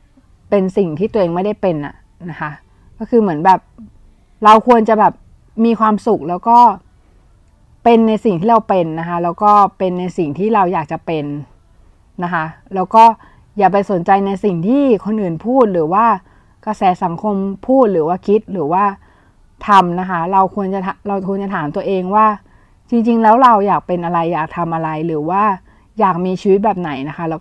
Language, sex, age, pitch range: Thai, female, 20-39, 170-220 Hz